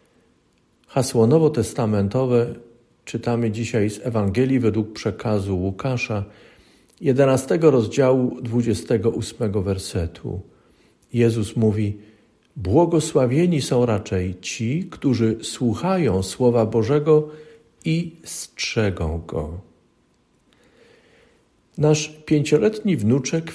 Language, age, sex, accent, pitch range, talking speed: Polish, 50-69, male, native, 105-140 Hz, 75 wpm